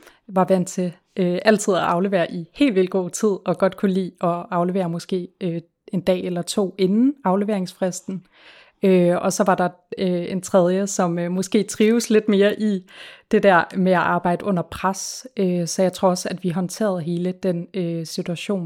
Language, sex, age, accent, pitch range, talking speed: Danish, female, 30-49, native, 175-195 Hz, 170 wpm